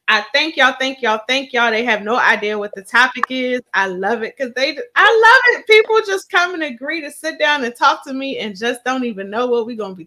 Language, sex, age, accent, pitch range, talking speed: English, female, 20-39, American, 200-255 Hz, 270 wpm